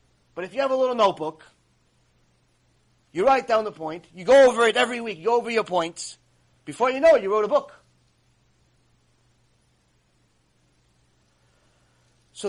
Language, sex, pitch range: English, male, 160-230 Hz